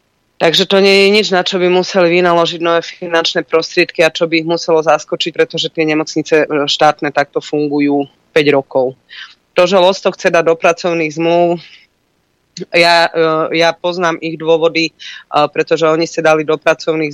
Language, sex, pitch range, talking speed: Slovak, female, 150-165 Hz, 160 wpm